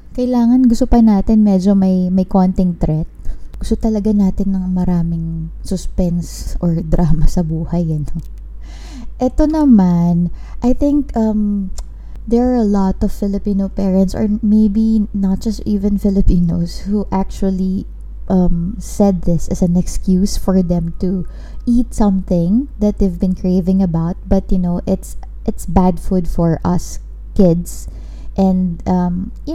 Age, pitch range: 20-39, 175-225 Hz